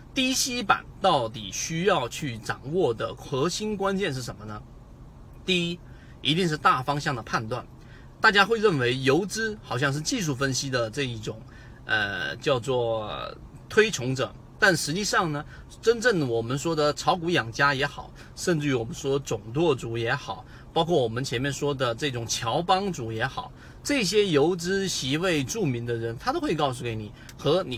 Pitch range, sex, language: 125-170 Hz, male, Chinese